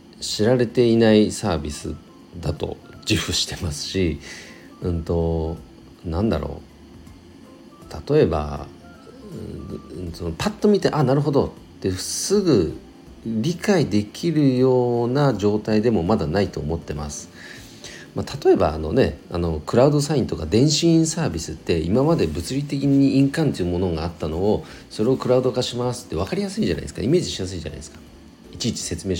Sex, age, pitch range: male, 40-59, 80-135 Hz